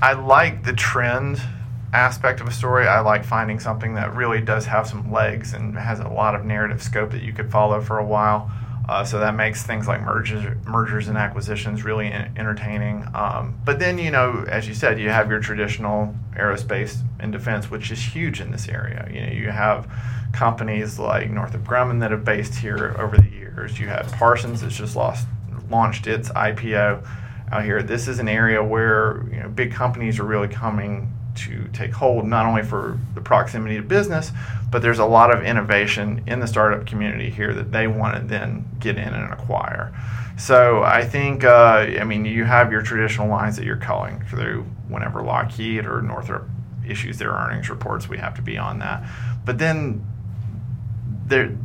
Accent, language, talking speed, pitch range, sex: American, English, 190 wpm, 110-120 Hz, male